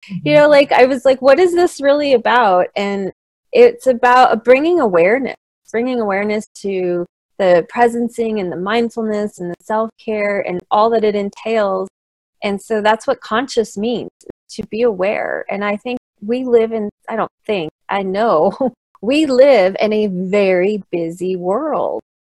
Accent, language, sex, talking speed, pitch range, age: American, English, female, 160 wpm, 190-245 Hz, 30-49